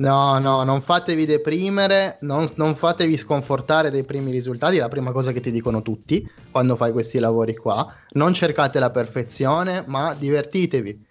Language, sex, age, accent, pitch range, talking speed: Italian, male, 20-39, native, 125-155 Hz, 165 wpm